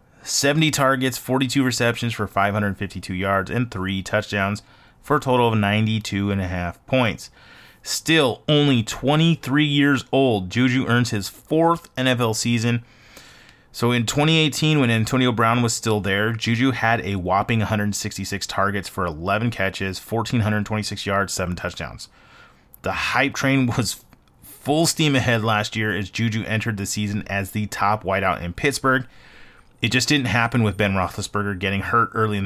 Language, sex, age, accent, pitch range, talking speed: English, male, 30-49, American, 100-130 Hz, 155 wpm